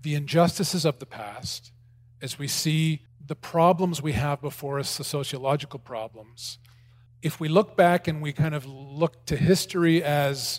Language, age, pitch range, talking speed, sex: English, 40-59, 125-160 Hz, 165 wpm, male